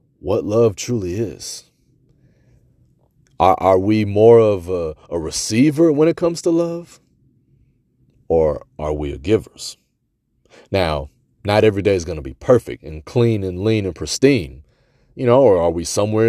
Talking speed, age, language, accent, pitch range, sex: 160 wpm, 30-49, English, American, 90-125 Hz, male